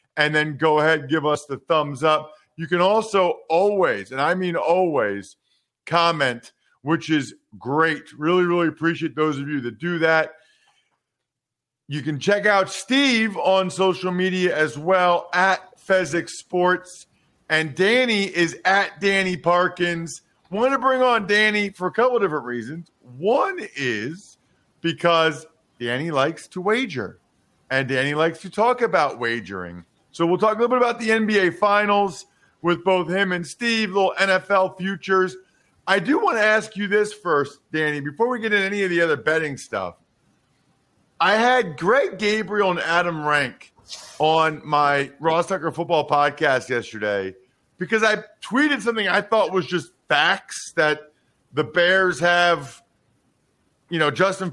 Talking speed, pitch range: 155 wpm, 155-200 Hz